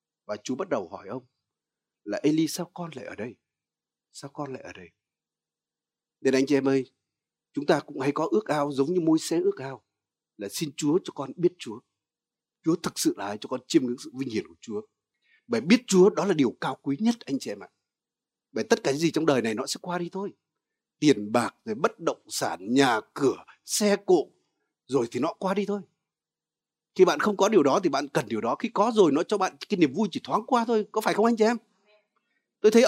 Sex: male